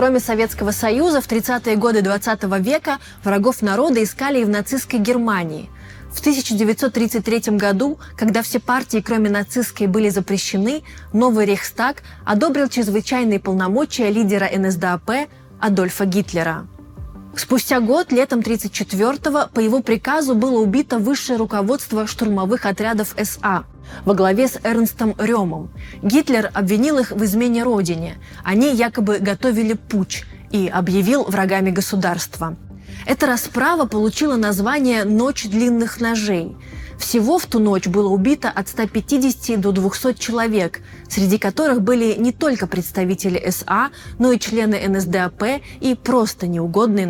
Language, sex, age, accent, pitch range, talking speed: Russian, female, 20-39, native, 195-250 Hz, 125 wpm